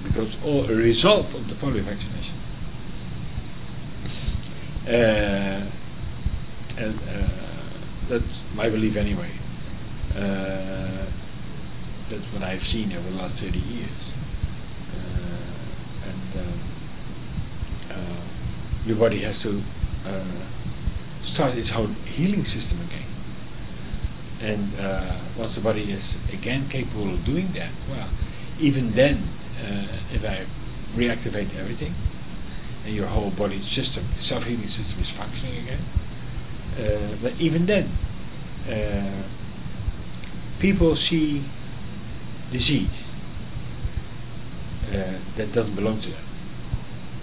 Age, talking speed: 60-79, 105 wpm